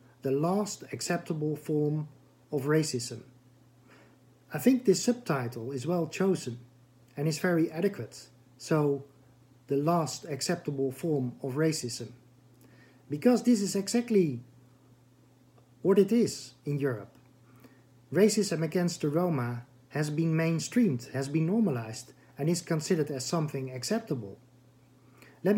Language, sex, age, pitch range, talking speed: English, male, 50-69, 125-170 Hz, 115 wpm